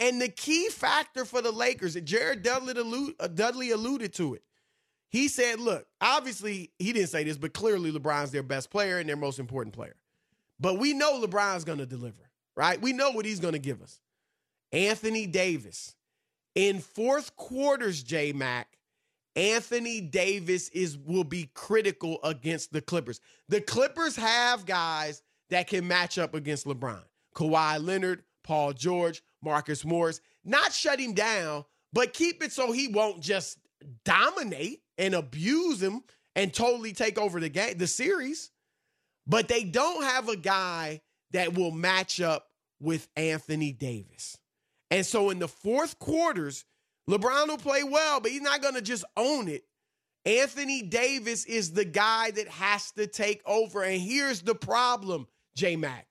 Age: 30-49